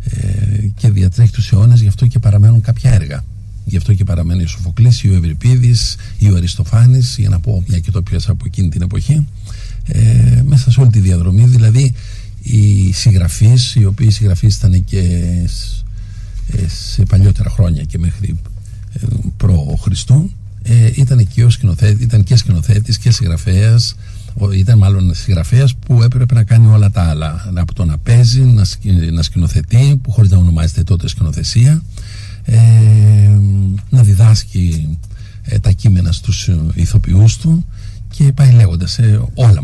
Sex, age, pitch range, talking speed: male, 60-79, 95-115 Hz, 145 wpm